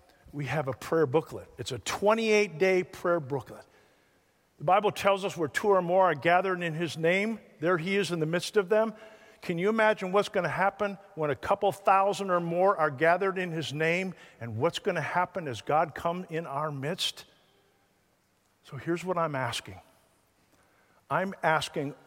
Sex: male